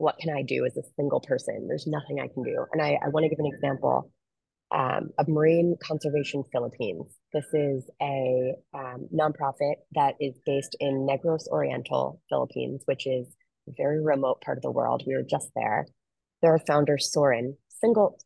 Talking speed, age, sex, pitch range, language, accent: 175 wpm, 20-39, female, 130-155 Hz, English, American